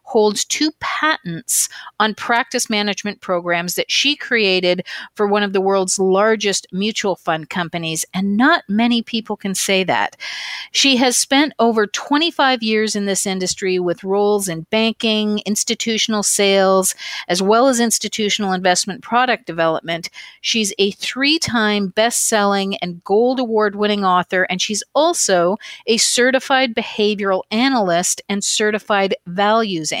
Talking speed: 135 wpm